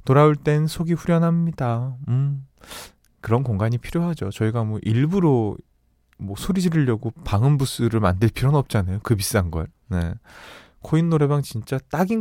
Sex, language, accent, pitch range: male, Korean, native, 105-155 Hz